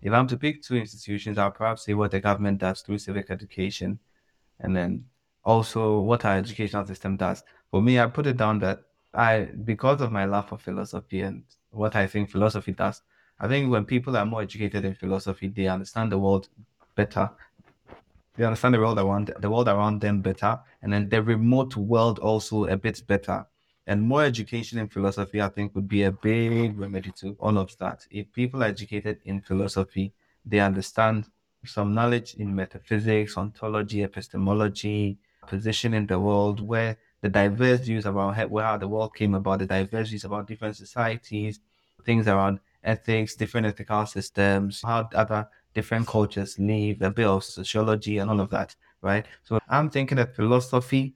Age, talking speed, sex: 20-39, 175 wpm, male